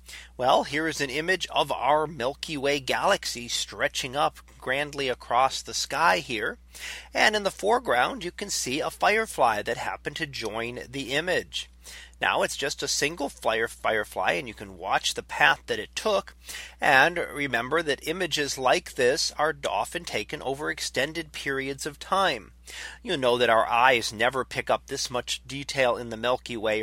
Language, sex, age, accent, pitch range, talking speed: English, male, 40-59, American, 115-155 Hz, 170 wpm